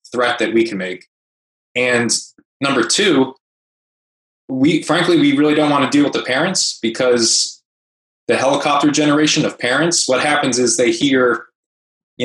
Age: 20-39